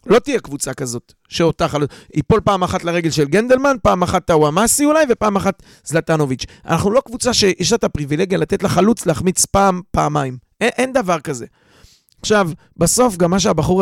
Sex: male